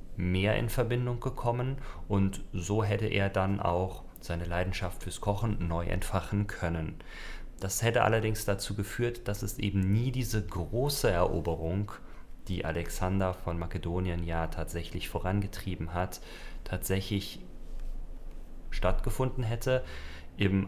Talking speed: 120 wpm